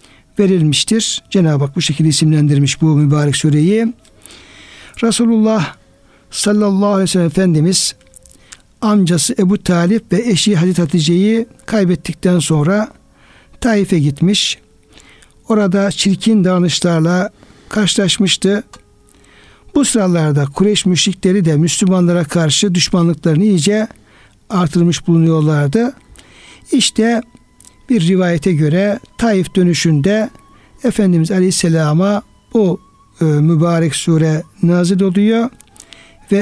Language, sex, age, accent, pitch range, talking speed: Turkish, male, 60-79, native, 165-210 Hz, 95 wpm